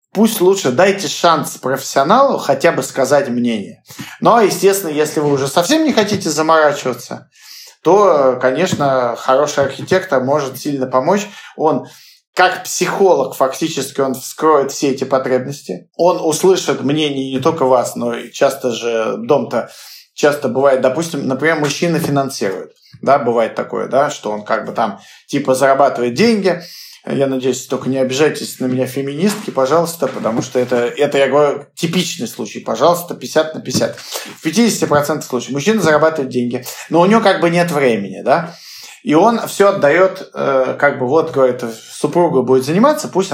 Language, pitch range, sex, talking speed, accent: Russian, 130-175 Hz, male, 150 wpm, native